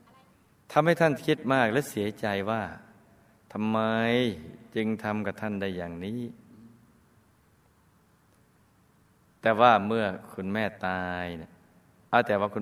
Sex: male